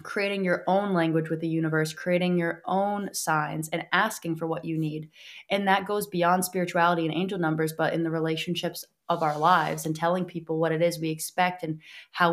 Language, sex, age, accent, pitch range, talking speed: English, female, 20-39, American, 160-175 Hz, 205 wpm